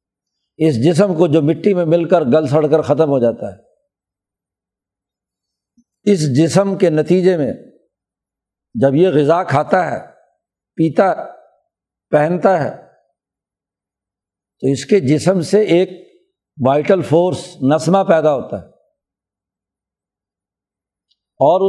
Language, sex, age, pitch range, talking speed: Urdu, male, 60-79, 145-195 Hz, 115 wpm